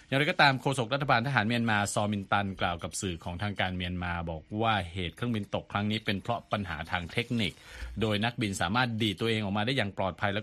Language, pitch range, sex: Thai, 90-115 Hz, male